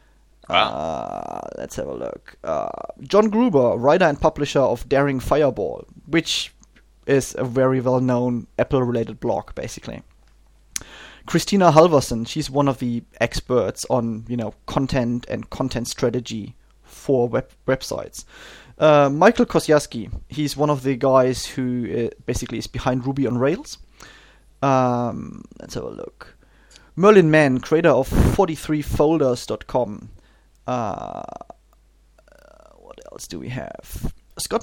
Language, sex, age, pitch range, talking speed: English, male, 30-49, 120-150 Hz, 125 wpm